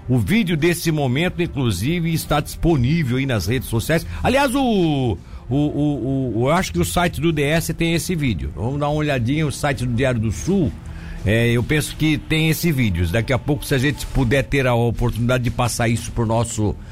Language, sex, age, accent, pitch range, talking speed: Portuguese, male, 60-79, Brazilian, 115-165 Hz, 210 wpm